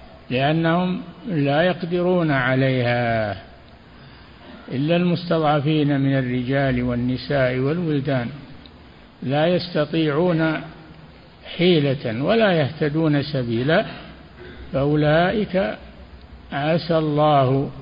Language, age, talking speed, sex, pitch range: Arabic, 60-79, 65 wpm, male, 130-160 Hz